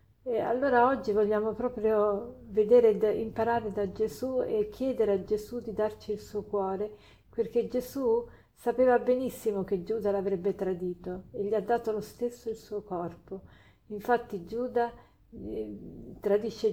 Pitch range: 200-230 Hz